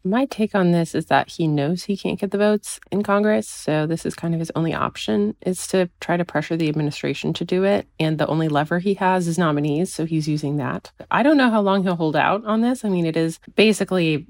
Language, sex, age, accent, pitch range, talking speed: English, female, 20-39, American, 135-170 Hz, 250 wpm